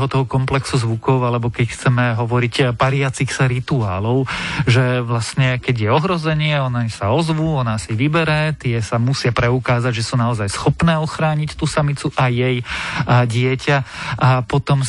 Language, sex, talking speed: Slovak, male, 155 wpm